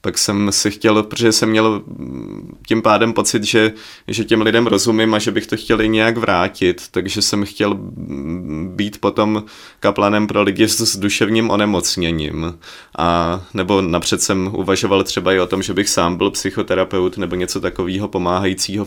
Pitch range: 95-105 Hz